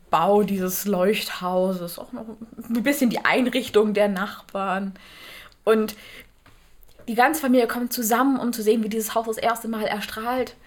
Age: 20-39